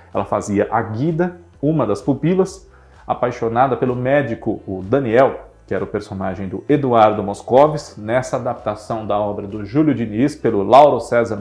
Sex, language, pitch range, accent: male, Portuguese, 110-145 Hz, Brazilian